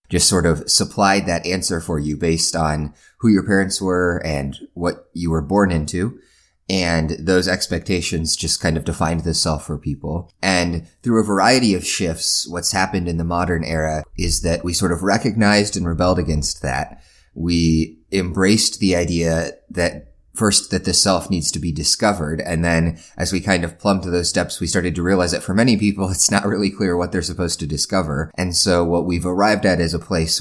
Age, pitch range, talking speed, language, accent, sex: 30-49, 80-95 Hz, 200 wpm, English, American, male